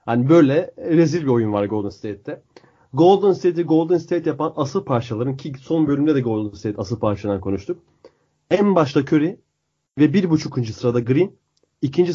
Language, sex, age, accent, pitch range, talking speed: Turkish, male, 30-49, native, 125-165 Hz, 165 wpm